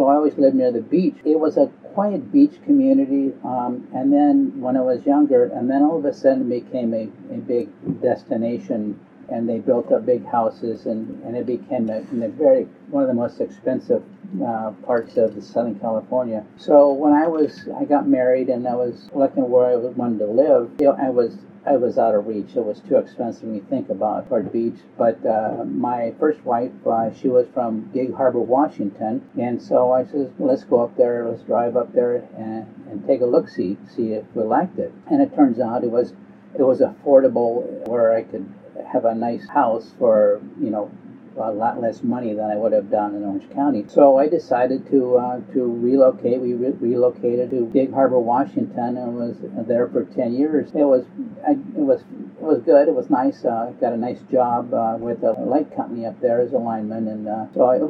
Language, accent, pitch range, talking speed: English, American, 120-155 Hz, 210 wpm